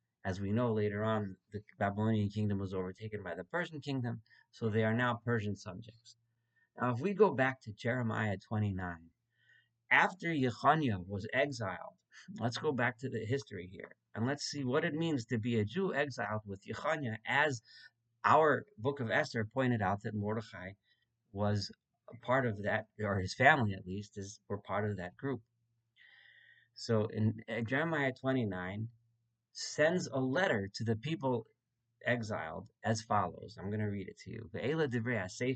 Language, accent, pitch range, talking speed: English, American, 105-130 Hz, 165 wpm